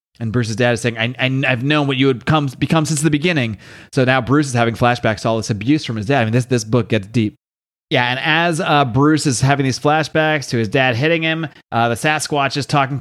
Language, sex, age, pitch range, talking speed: English, male, 30-49, 120-145 Hz, 260 wpm